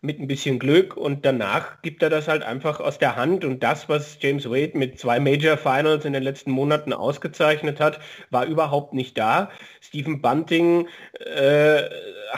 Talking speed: 175 wpm